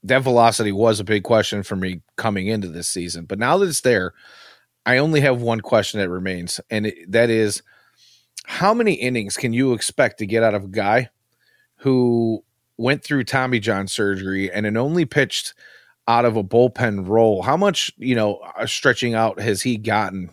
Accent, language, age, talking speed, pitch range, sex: American, English, 30-49, 190 wpm, 100-125 Hz, male